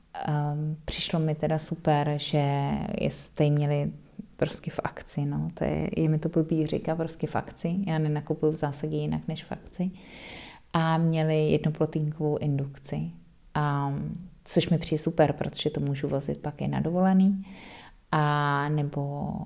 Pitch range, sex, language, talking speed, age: 145-165 Hz, female, Czech, 155 wpm, 30-49